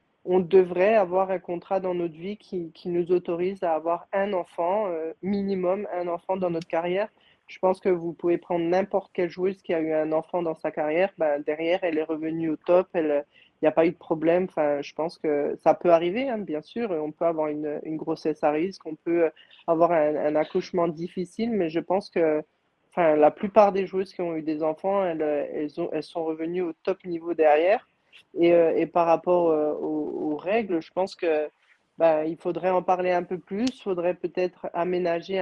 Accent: French